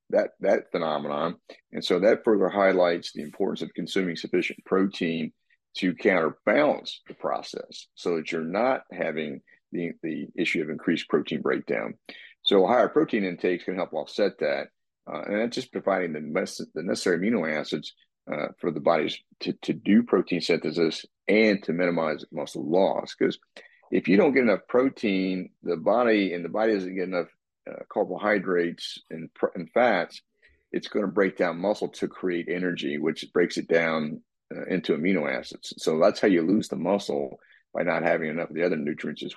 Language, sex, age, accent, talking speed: English, male, 40-59, American, 180 wpm